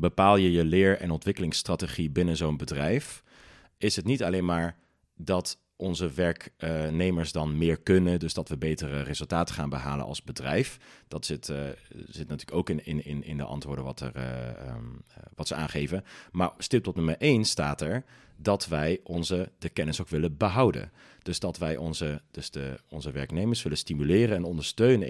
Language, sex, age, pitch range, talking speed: Dutch, male, 40-59, 75-95 Hz, 175 wpm